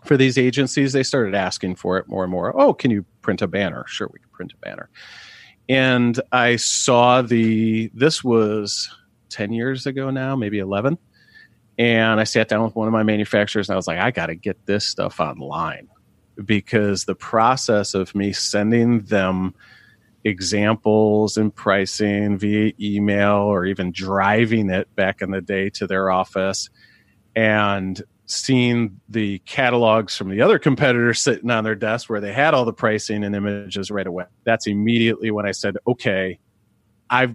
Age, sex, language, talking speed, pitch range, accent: 40-59, male, English, 170 wpm, 100-115 Hz, American